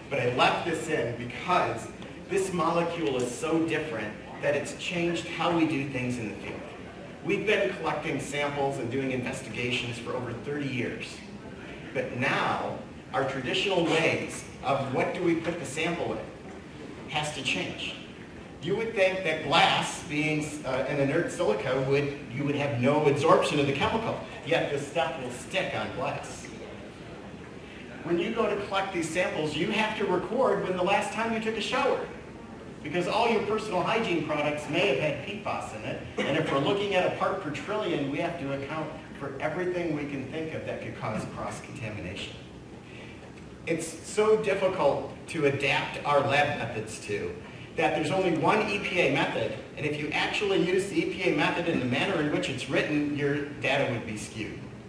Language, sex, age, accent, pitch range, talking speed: English, male, 50-69, American, 140-180 Hz, 180 wpm